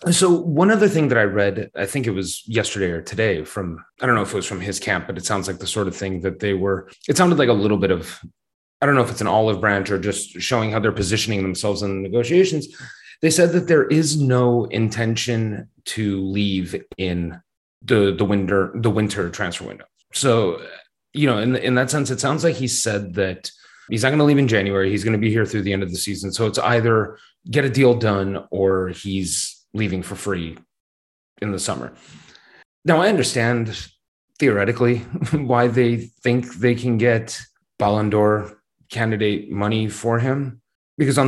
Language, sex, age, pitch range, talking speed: English, male, 30-49, 100-130 Hz, 200 wpm